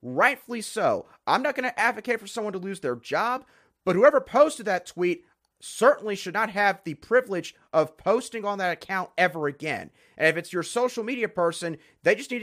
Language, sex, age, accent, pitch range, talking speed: English, male, 30-49, American, 170-240 Hz, 200 wpm